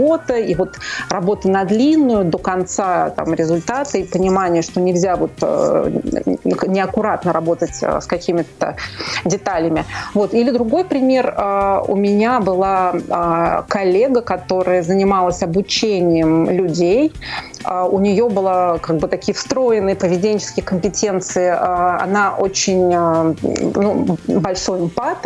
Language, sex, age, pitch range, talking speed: Russian, female, 30-49, 185-225 Hz, 100 wpm